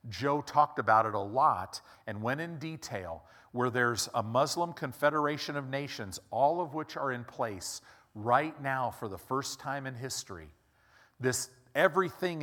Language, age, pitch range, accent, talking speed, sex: English, 50-69, 110-140 Hz, American, 160 wpm, male